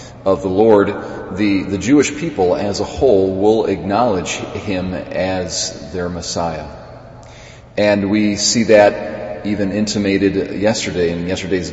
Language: English